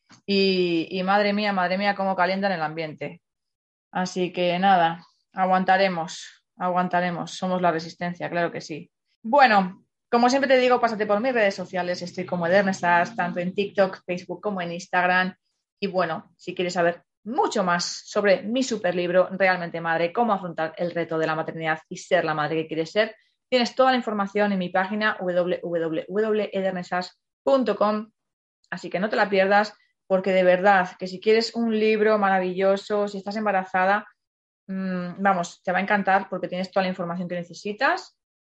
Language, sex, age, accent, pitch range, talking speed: Spanish, female, 20-39, Spanish, 175-205 Hz, 165 wpm